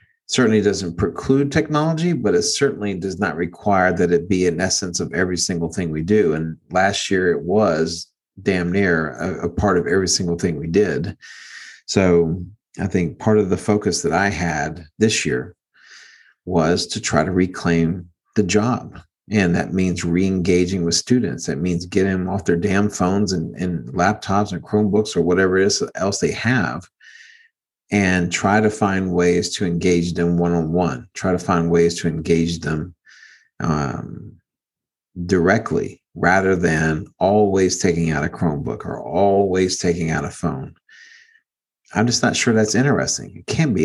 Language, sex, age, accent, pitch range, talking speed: English, male, 40-59, American, 85-110 Hz, 165 wpm